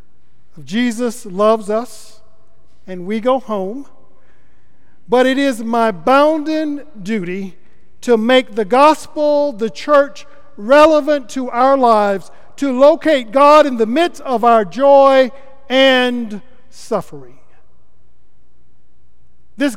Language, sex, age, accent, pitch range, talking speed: English, male, 50-69, American, 205-275 Hz, 105 wpm